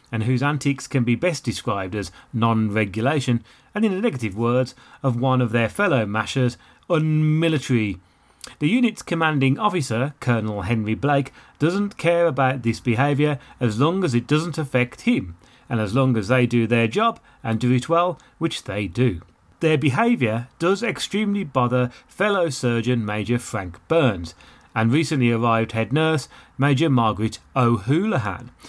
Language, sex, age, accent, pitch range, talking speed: English, male, 30-49, British, 120-155 Hz, 155 wpm